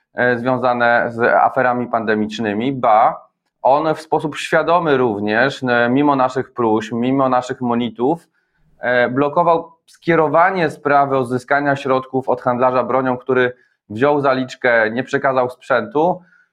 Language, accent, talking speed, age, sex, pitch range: Polish, native, 110 wpm, 20-39, male, 125-145 Hz